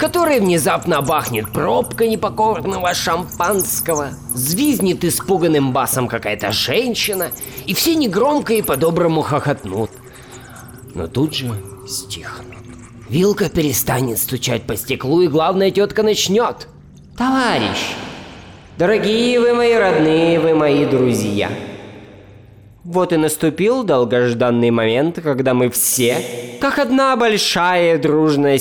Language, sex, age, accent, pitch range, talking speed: Russian, male, 20-39, native, 125-195 Hz, 105 wpm